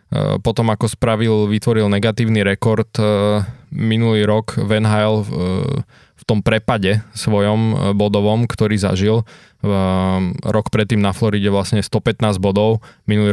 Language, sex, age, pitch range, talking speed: Slovak, male, 20-39, 100-110 Hz, 110 wpm